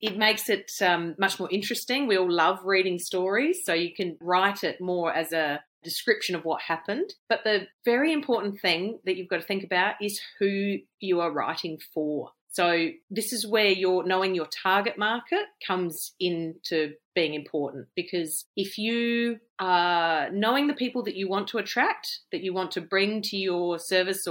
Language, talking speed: English, 185 wpm